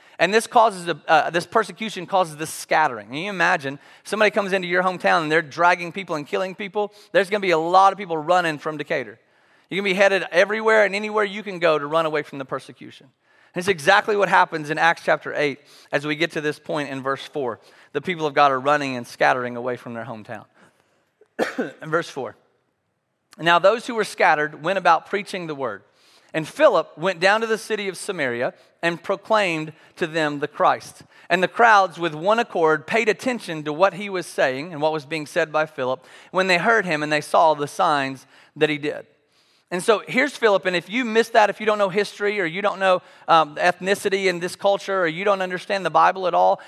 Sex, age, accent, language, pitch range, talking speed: male, 30-49, American, English, 150-200 Hz, 220 wpm